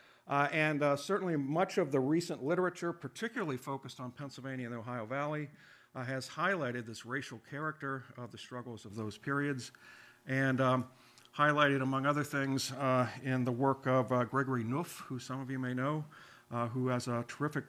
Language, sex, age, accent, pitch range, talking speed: English, male, 50-69, American, 120-145 Hz, 185 wpm